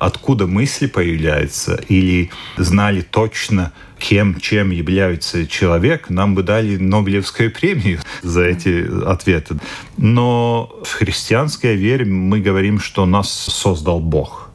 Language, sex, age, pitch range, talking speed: Russian, male, 40-59, 95-120 Hz, 115 wpm